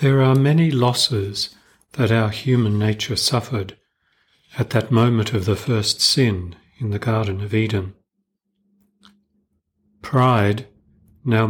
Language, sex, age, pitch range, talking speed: English, male, 40-59, 100-125 Hz, 120 wpm